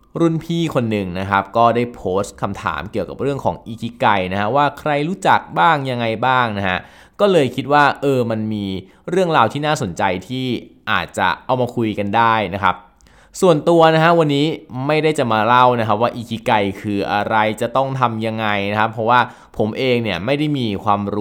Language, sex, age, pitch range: Thai, male, 20-39, 100-135 Hz